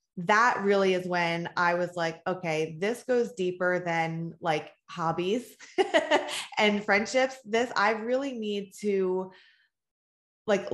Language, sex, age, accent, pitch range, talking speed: English, female, 20-39, American, 180-215 Hz, 125 wpm